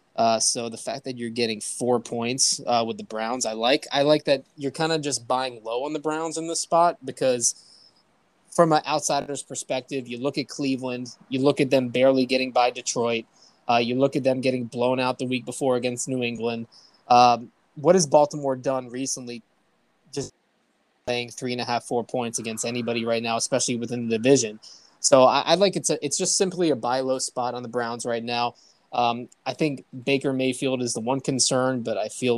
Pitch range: 120-140 Hz